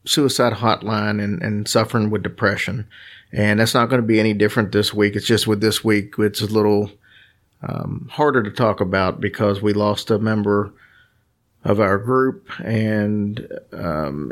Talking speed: 170 wpm